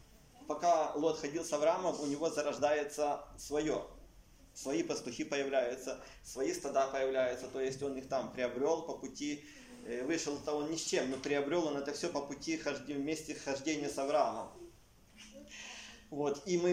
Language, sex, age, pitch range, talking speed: Russian, male, 20-39, 145-185 Hz, 155 wpm